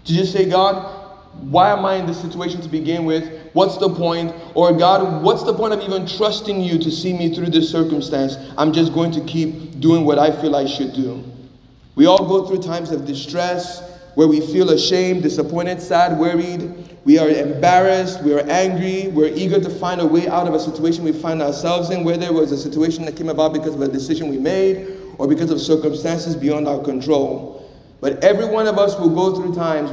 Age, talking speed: 30-49, 215 wpm